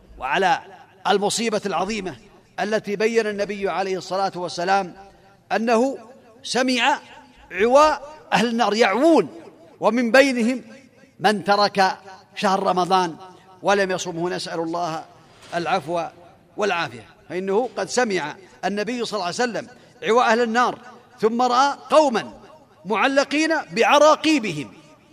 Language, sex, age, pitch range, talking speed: Arabic, male, 40-59, 185-260 Hz, 105 wpm